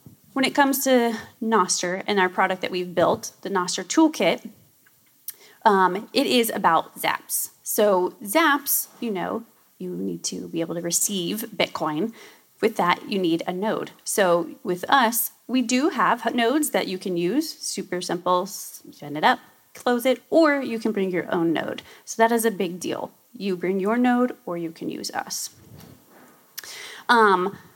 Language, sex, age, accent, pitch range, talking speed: English, female, 30-49, American, 180-250 Hz, 170 wpm